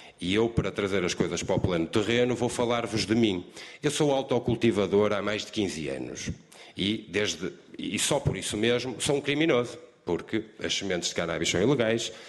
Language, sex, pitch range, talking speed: Portuguese, male, 95-125 Hz, 185 wpm